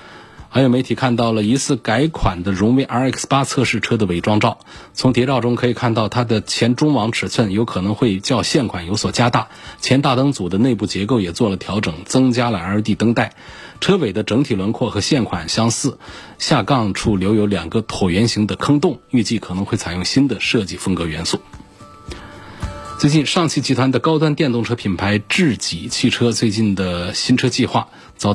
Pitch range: 100-130 Hz